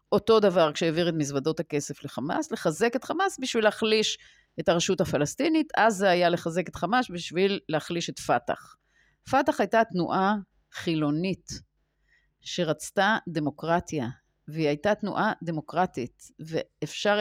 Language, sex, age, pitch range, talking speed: Hebrew, female, 30-49, 160-210 Hz, 125 wpm